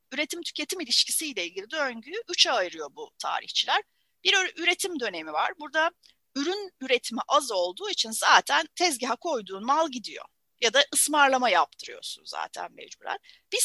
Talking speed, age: 130 wpm, 40-59